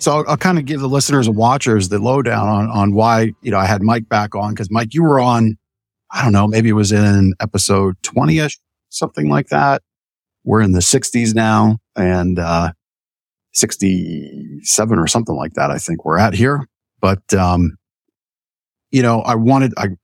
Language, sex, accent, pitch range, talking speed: English, male, American, 95-110 Hz, 195 wpm